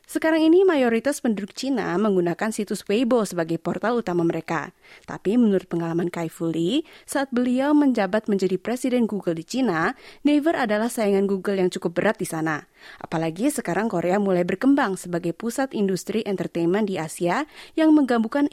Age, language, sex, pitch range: 20-39, Malay, female, 175-245 Hz